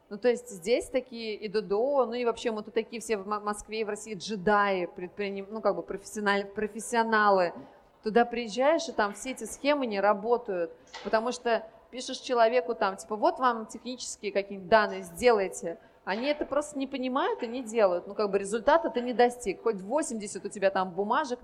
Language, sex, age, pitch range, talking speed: Russian, female, 30-49, 200-245 Hz, 185 wpm